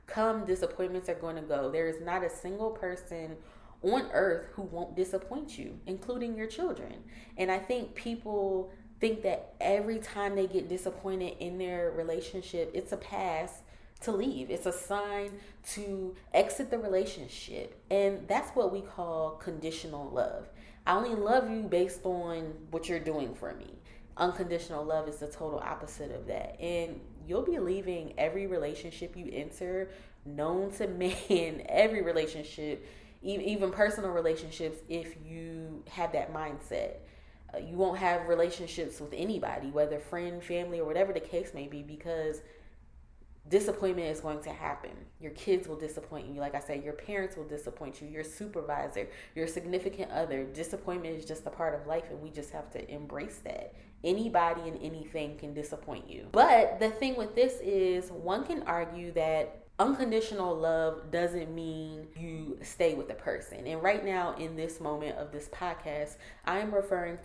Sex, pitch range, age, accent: female, 155-190 Hz, 20-39, American